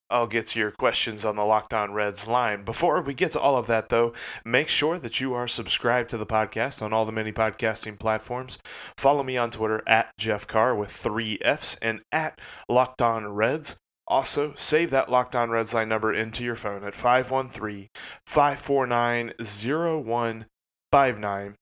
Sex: male